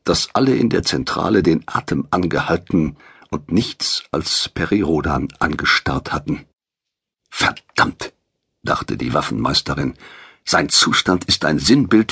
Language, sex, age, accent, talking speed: German, male, 50-69, German, 115 wpm